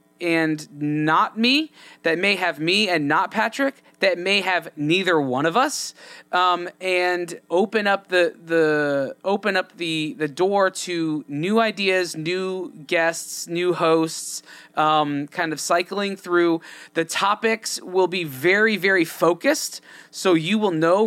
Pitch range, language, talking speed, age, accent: 165-195 Hz, English, 145 wpm, 20-39, American